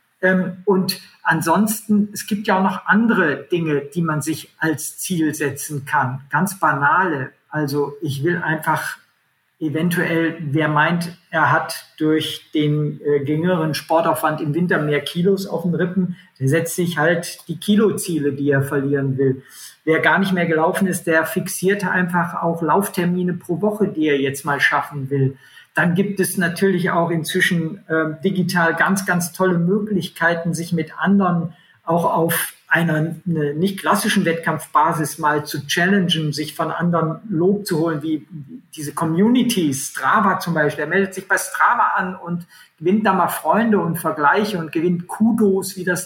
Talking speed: 160 wpm